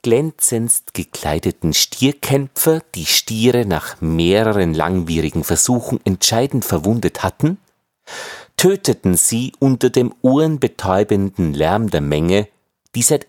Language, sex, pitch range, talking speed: German, male, 90-130 Hz, 100 wpm